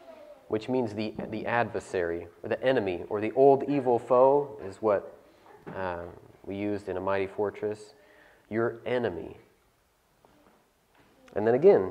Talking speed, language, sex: 135 wpm, English, male